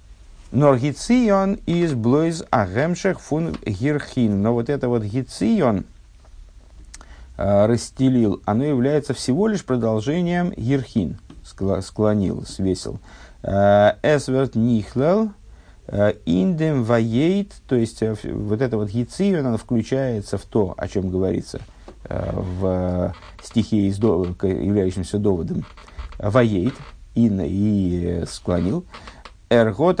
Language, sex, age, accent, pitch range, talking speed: Russian, male, 50-69, native, 100-140 Hz, 85 wpm